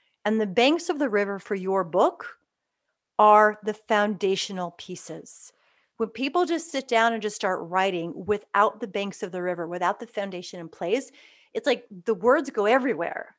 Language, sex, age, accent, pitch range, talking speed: English, female, 30-49, American, 185-245 Hz, 175 wpm